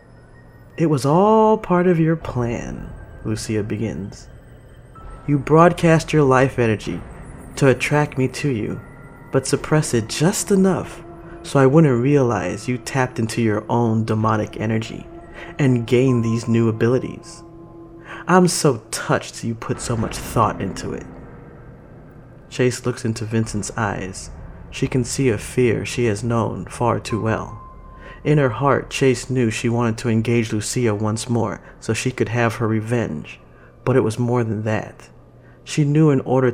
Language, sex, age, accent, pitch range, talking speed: English, male, 30-49, American, 110-135 Hz, 155 wpm